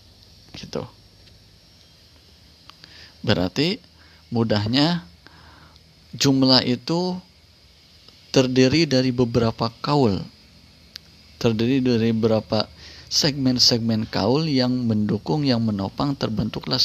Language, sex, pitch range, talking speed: Indonesian, male, 95-130 Hz, 70 wpm